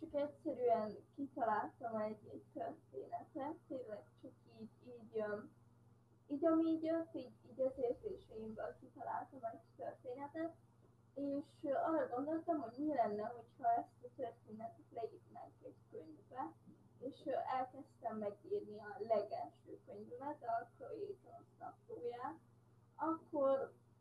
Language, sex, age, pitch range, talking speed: Hungarian, female, 20-39, 230-320 Hz, 110 wpm